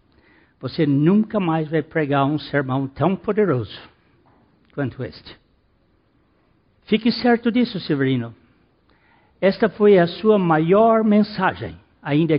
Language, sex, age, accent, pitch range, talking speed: Portuguese, male, 60-79, Brazilian, 125-190 Hz, 105 wpm